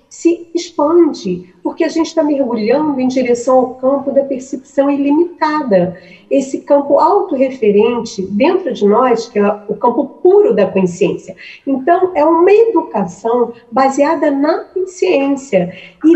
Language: Portuguese